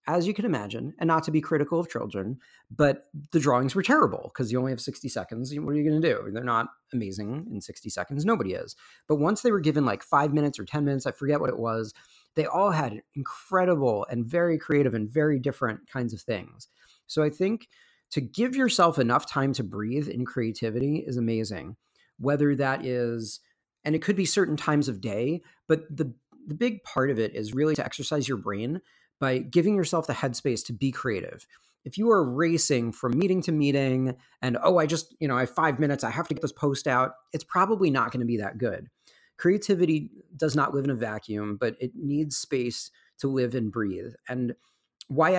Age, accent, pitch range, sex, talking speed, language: 40-59, American, 120-155 Hz, male, 210 wpm, English